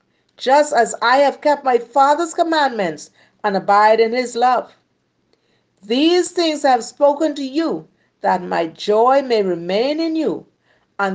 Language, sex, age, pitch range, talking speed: English, female, 50-69, 175-255 Hz, 145 wpm